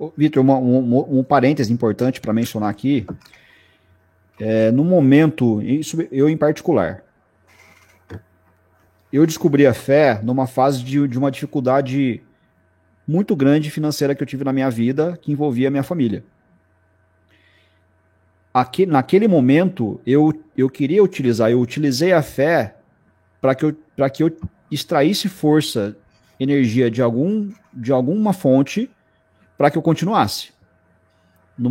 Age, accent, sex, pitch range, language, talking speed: 40-59, Brazilian, male, 105-150 Hz, Portuguese, 115 wpm